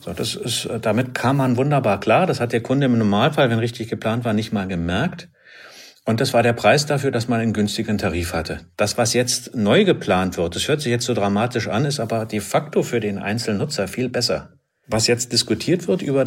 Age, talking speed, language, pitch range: 50-69, 220 wpm, German, 95-125 Hz